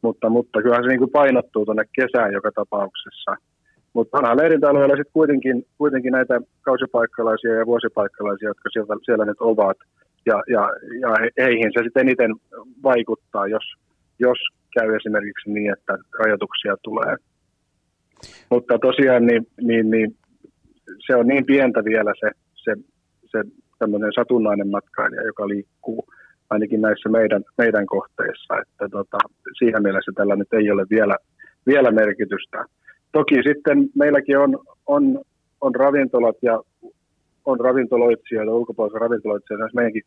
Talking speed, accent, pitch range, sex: 135 wpm, native, 110-130 Hz, male